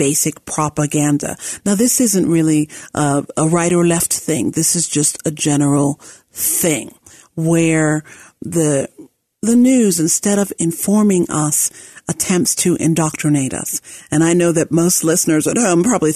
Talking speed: 145 wpm